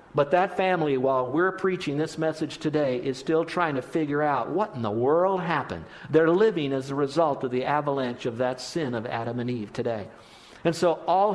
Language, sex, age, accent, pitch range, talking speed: English, male, 50-69, American, 135-185 Hz, 205 wpm